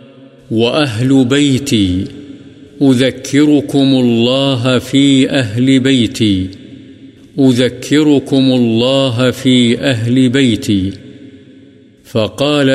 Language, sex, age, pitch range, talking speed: Urdu, male, 50-69, 125-135 Hz, 60 wpm